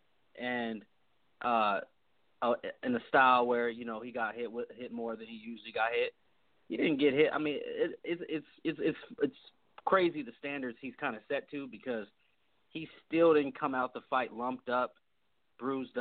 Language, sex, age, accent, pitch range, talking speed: English, male, 30-49, American, 125-205 Hz, 180 wpm